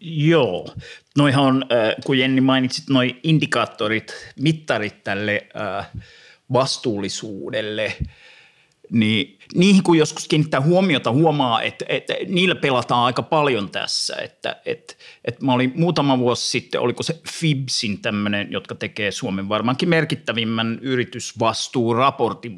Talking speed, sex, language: 115 wpm, male, Finnish